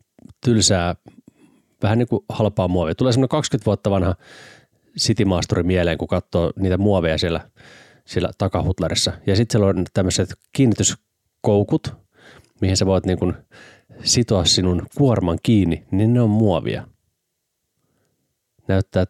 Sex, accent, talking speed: male, native, 125 wpm